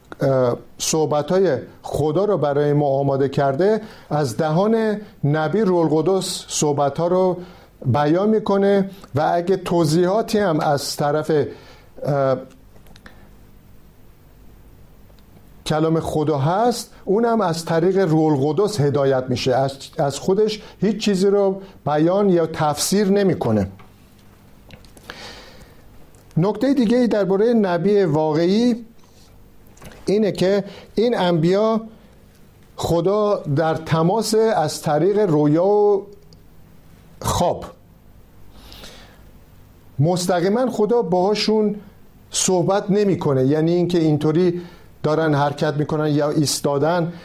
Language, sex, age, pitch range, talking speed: Persian, male, 50-69, 150-200 Hz, 95 wpm